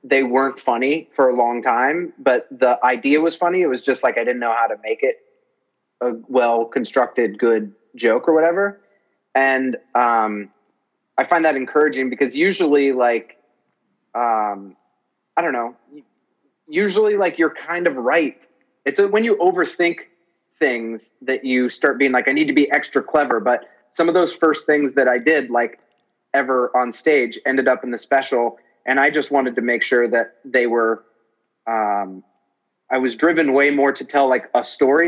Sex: male